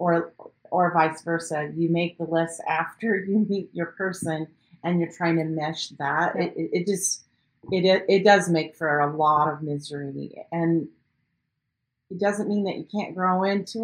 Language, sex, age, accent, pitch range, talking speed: English, female, 30-49, American, 155-185 Hz, 180 wpm